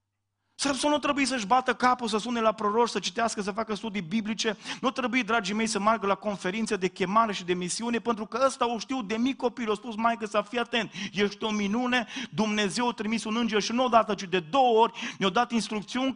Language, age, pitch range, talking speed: Romanian, 30-49, 180-235 Hz, 230 wpm